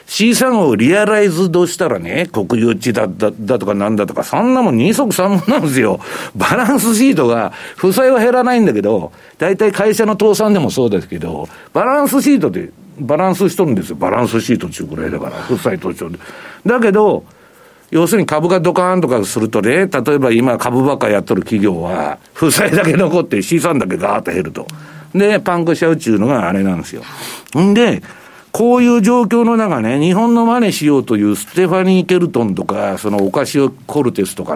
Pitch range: 130-205 Hz